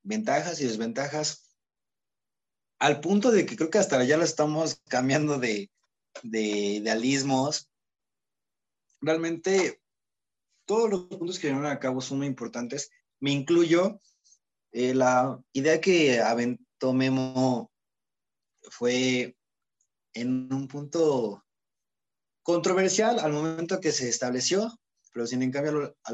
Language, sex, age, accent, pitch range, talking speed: Spanish, male, 30-49, Mexican, 125-160 Hz, 120 wpm